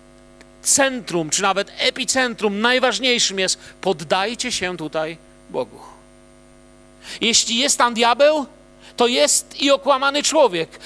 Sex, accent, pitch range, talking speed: male, native, 205-240 Hz, 105 wpm